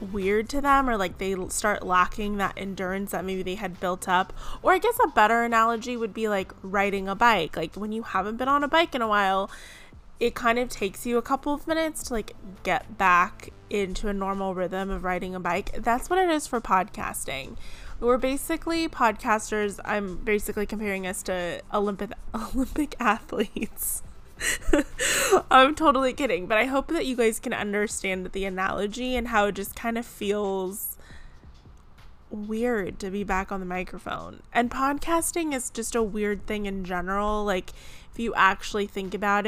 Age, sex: 20-39, female